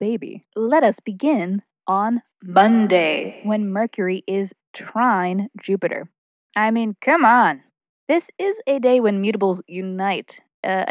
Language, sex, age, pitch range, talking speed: English, female, 20-39, 195-260 Hz, 125 wpm